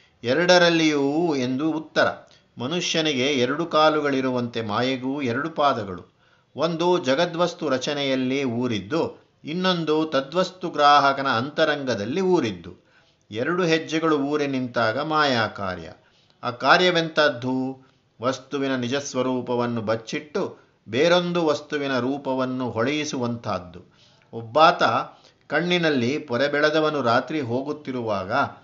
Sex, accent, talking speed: male, native, 80 wpm